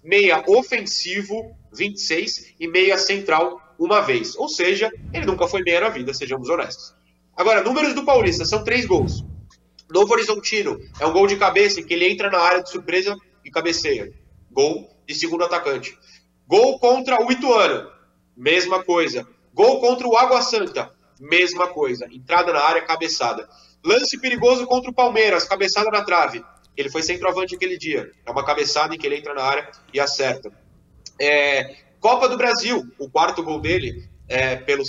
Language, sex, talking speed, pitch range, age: Portuguese, male, 165 wpm, 165-255 Hz, 30-49